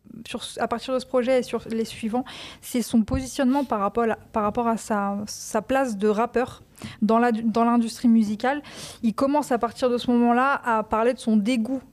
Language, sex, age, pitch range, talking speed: French, female, 20-39, 215-245 Hz, 210 wpm